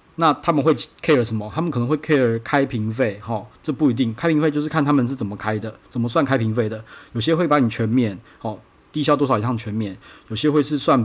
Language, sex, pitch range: Chinese, male, 110-135 Hz